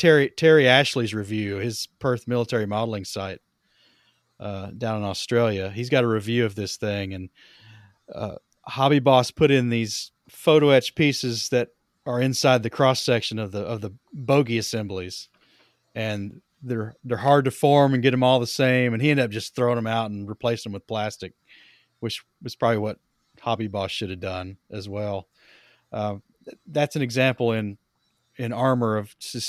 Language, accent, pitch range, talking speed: English, American, 110-135 Hz, 180 wpm